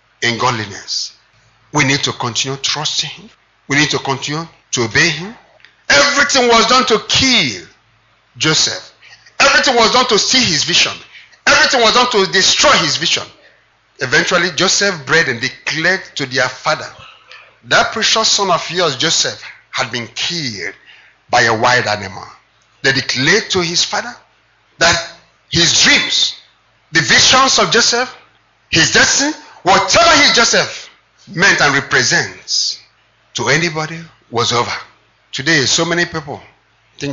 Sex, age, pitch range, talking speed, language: male, 50-69, 125-175 Hz, 135 wpm, English